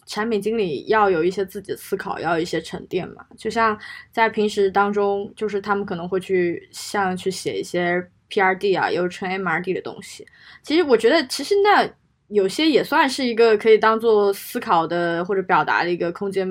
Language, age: Chinese, 20-39